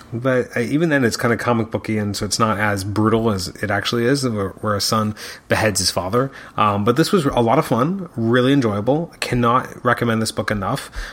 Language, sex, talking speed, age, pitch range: English, male, 215 wpm, 30-49, 110-130 Hz